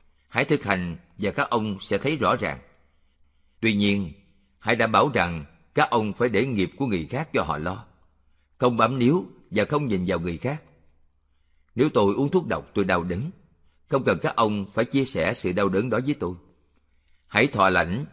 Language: Vietnamese